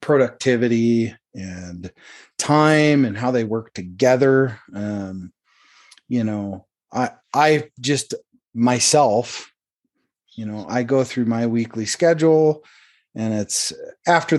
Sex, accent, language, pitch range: male, American, English, 105-140 Hz